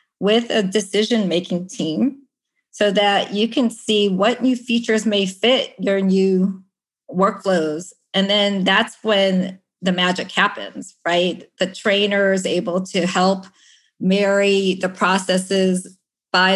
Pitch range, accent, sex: 185-210 Hz, American, female